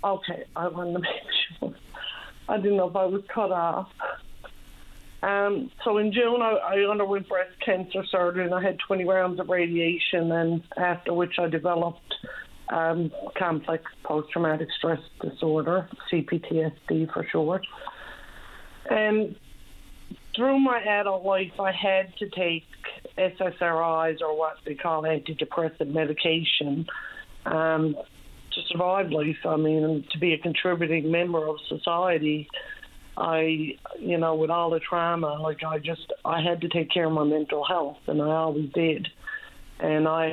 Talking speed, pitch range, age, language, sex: 145 wpm, 160-190 Hz, 50-69, English, female